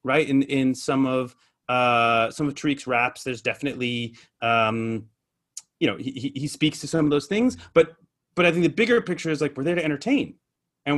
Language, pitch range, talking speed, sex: English, 120-150 Hz, 200 wpm, male